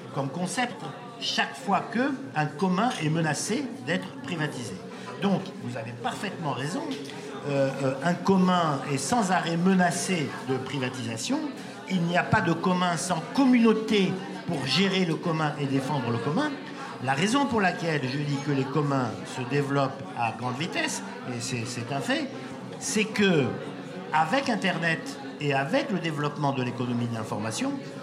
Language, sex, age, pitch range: French, male, 50-69, 140-220 Hz